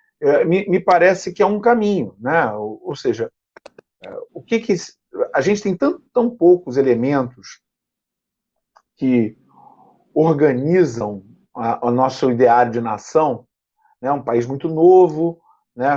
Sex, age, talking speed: male, 40-59, 135 wpm